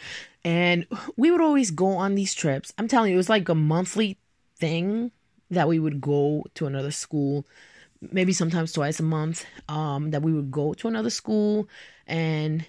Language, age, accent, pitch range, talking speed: English, 20-39, American, 150-210 Hz, 180 wpm